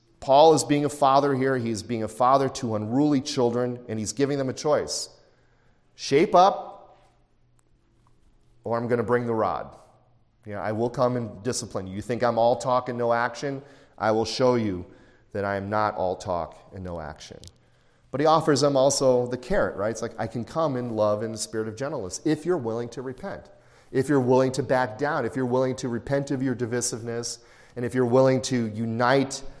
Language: English